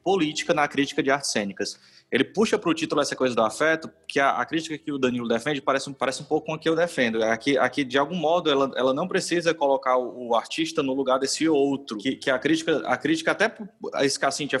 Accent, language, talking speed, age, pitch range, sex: Brazilian, Portuguese, 240 wpm, 20-39, 130-160 Hz, male